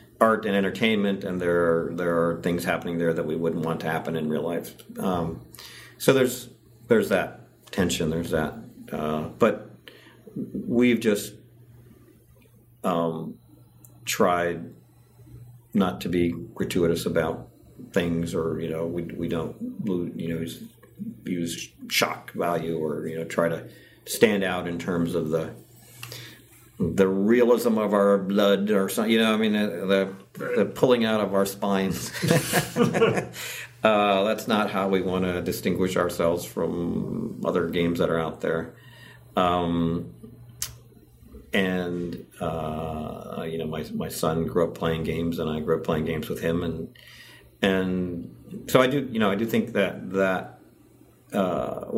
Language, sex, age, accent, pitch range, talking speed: English, male, 50-69, American, 85-105 Hz, 150 wpm